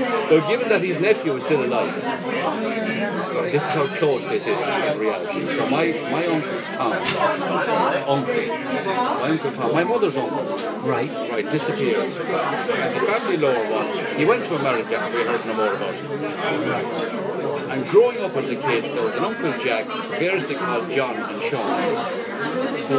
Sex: male